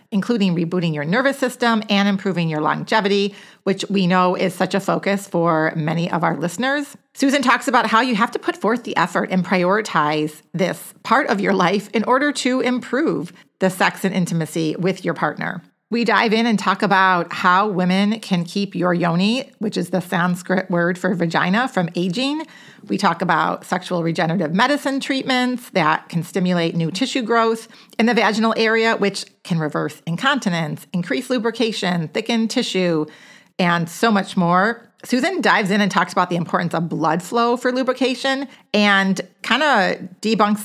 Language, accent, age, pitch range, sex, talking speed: English, American, 40-59, 175-225 Hz, female, 175 wpm